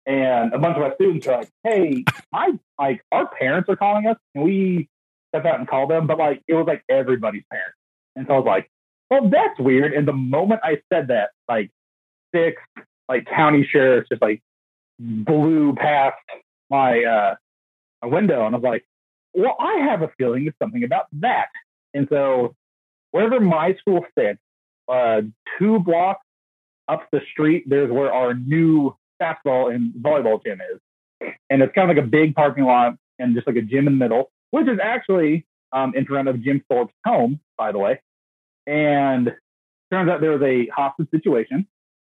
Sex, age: male, 40-59